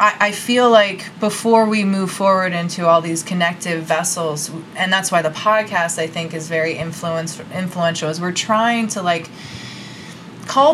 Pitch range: 180-225 Hz